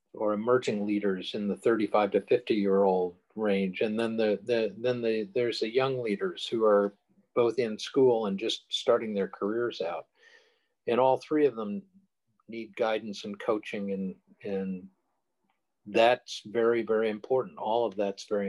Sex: male